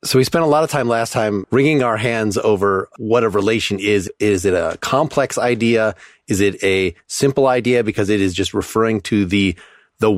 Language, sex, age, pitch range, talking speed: English, male, 30-49, 100-120 Hz, 205 wpm